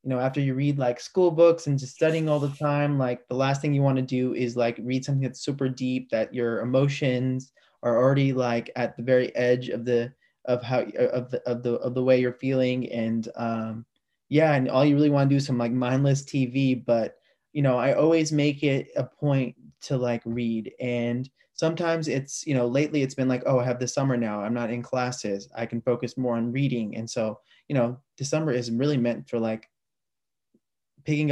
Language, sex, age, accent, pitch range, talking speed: English, male, 20-39, American, 120-140 Hz, 220 wpm